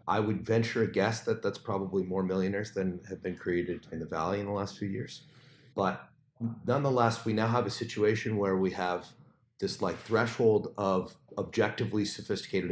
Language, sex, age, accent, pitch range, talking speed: English, male, 30-49, American, 90-115 Hz, 180 wpm